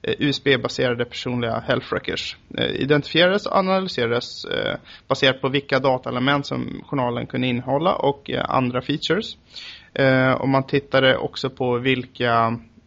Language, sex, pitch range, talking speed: English, male, 120-145 Hz, 110 wpm